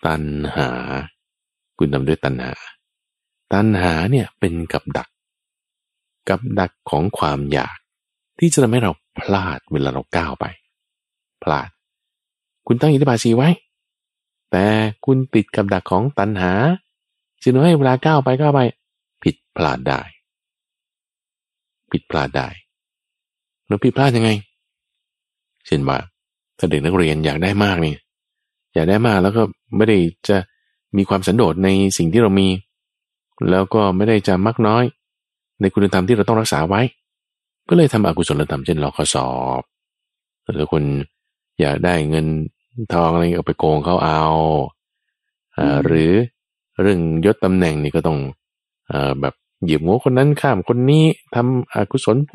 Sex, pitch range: male, 75-115 Hz